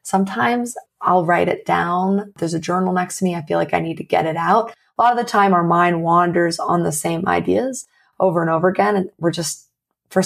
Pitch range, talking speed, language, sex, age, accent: 170-205 Hz, 235 wpm, English, female, 30-49, American